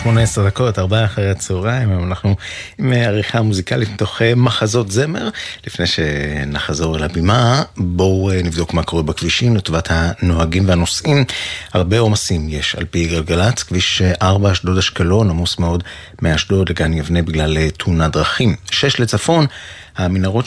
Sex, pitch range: male, 80-110 Hz